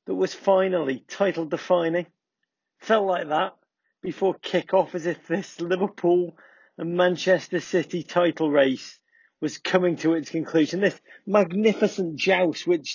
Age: 40-59